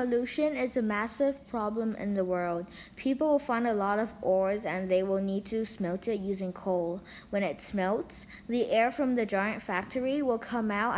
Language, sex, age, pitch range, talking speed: English, female, 20-39, 200-230 Hz, 195 wpm